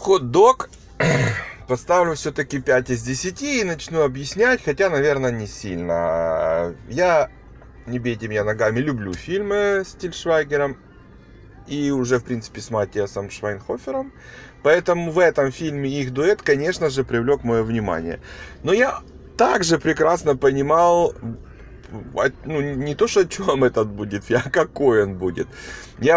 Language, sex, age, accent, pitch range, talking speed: Ukrainian, male, 30-49, native, 120-165 Hz, 135 wpm